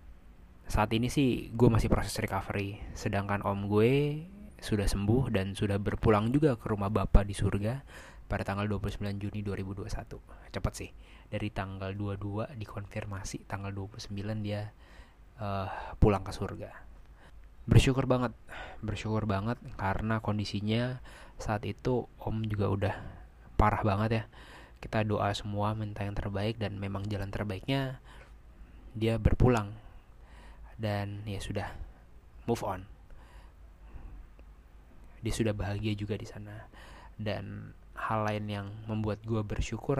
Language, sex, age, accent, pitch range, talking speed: Indonesian, male, 20-39, native, 95-110 Hz, 125 wpm